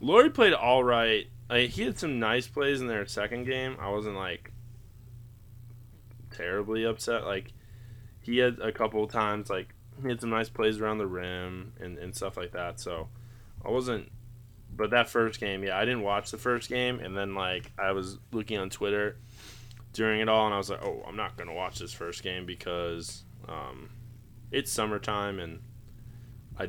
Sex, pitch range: male, 100-120 Hz